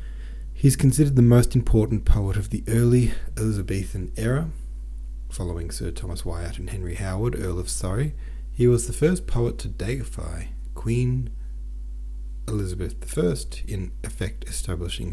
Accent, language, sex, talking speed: Australian, English, male, 135 wpm